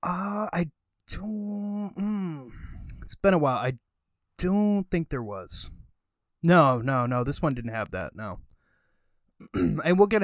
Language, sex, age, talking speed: English, male, 20-39, 145 wpm